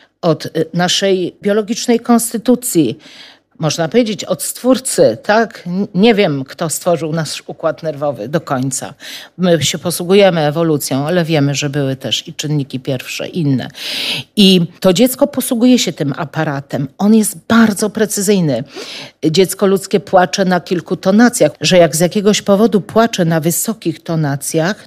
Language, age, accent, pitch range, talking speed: Polish, 50-69, native, 160-210 Hz, 140 wpm